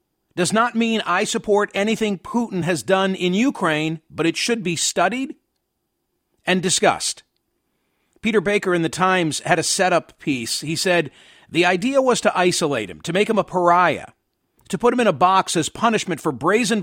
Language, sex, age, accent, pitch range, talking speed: English, male, 50-69, American, 170-210 Hz, 180 wpm